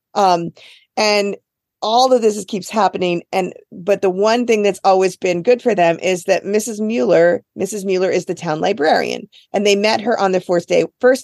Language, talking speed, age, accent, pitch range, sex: English, 205 wpm, 40-59, American, 175-215 Hz, female